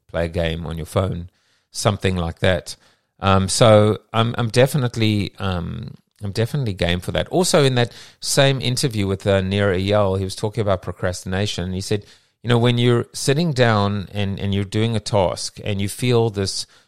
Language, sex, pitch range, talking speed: English, male, 95-120 Hz, 185 wpm